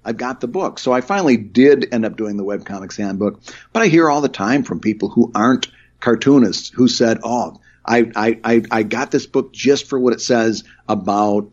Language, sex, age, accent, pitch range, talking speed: English, male, 50-69, American, 105-125 Hz, 210 wpm